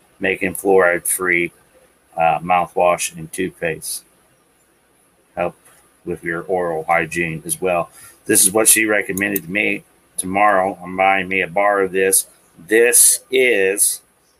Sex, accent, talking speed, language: male, American, 125 wpm, English